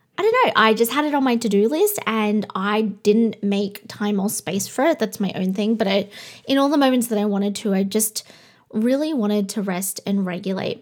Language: English